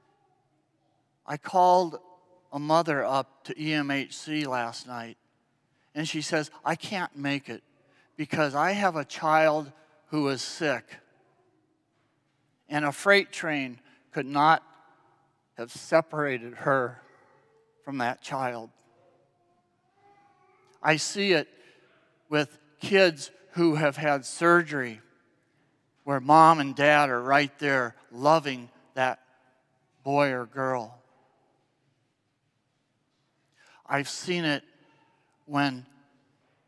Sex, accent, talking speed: male, American, 100 wpm